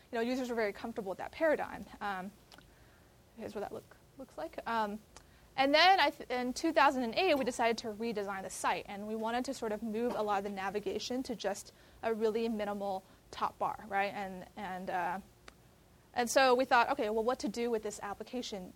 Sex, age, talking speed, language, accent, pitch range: female, 20-39, 205 wpm, English, American, 205-250 Hz